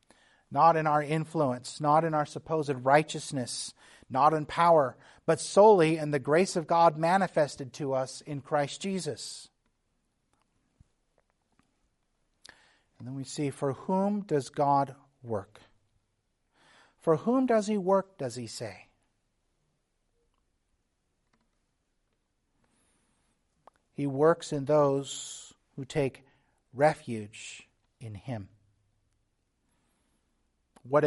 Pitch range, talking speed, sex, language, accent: 115-150 Hz, 100 wpm, male, English, American